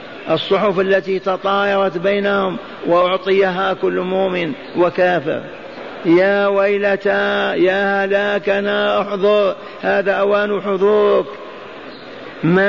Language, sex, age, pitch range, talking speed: Arabic, male, 50-69, 175-200 Hz, 80 wpm